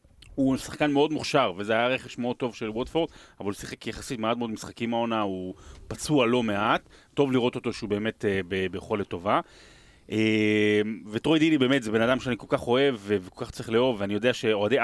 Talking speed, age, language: 205 wpm, 30-49, Hebrew